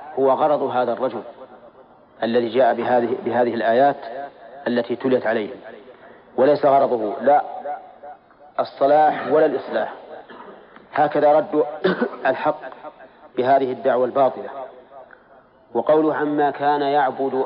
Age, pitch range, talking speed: 40-59, 125-145 Hz, 95 wpm